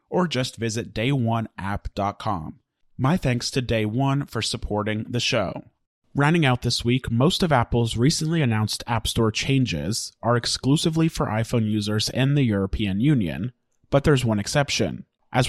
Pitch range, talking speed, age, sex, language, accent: 110-130 Hz, 150 wpm, 30-49, male, English, American